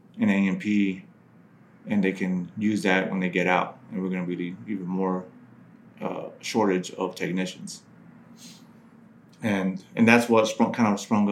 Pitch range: 95-105 Hz